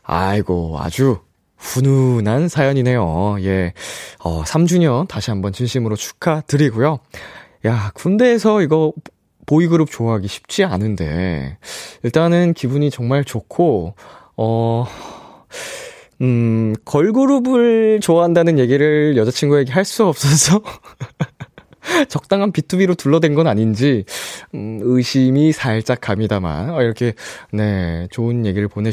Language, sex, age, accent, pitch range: Korean, male, 20-39, native, 110-165 Hz